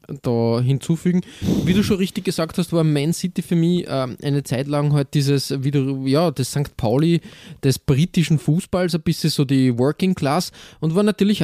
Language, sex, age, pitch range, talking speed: German, male, 20-39, 130-165 Hz, 200 wpm